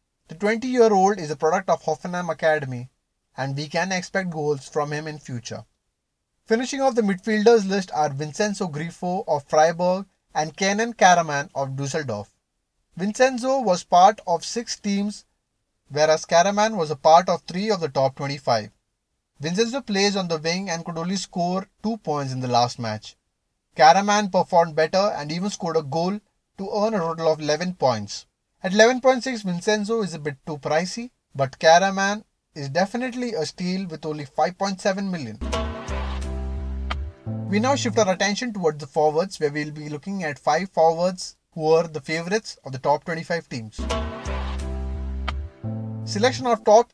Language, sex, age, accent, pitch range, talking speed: English, male, 20-39, Indian, 140-195 Hz, 160 wpm